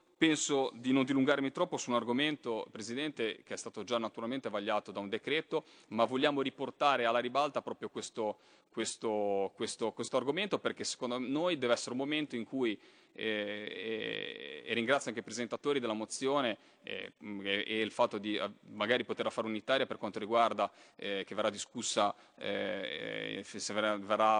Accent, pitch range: native, 110-150 Hz